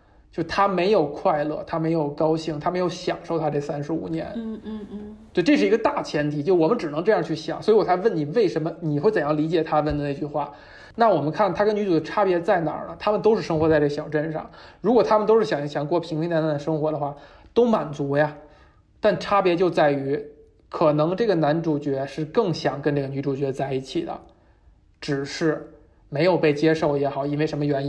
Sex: male